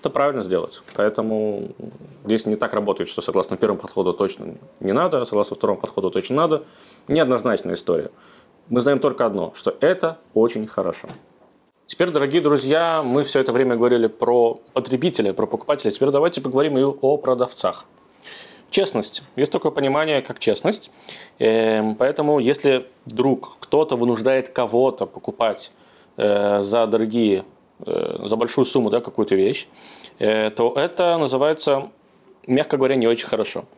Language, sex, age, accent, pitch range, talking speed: Russian, male, 20-39, native, 115-140 Hz, 140 wpm